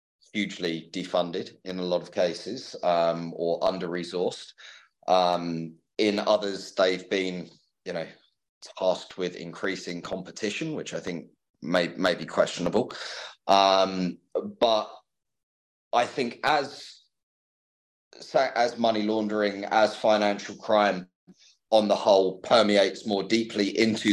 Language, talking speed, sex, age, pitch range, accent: English, 115 wpm, male, 30-49, 85-100 Hz, British